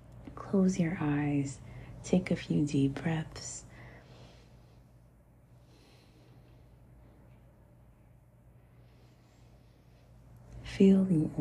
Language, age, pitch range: English, 30-49, 130-160 Hz